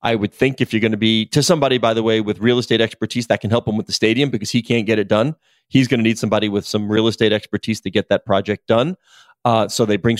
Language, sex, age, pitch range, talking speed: English, male, 30-49, 105-120 Hz, 290 wpm